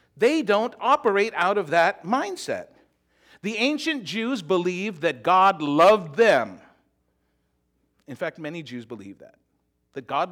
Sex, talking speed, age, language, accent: male, 135 wpm, 50-69, English, American